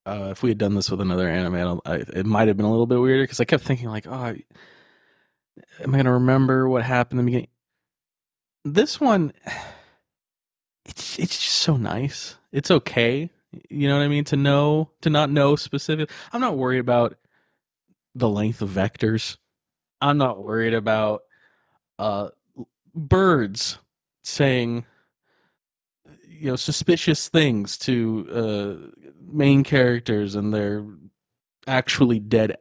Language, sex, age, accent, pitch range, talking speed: English, male, 20-39, American, 105-140 Hz, 145 wpm